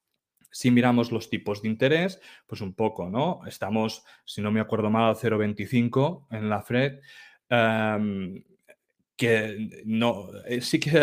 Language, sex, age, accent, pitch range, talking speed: Spanish, male, 30-49, Spanish, 105-135 Hz, 140 wpm